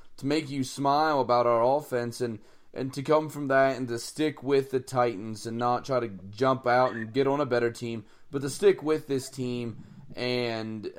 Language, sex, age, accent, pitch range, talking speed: English, male, 30-49, American, 120-145 Hz, 210 wpm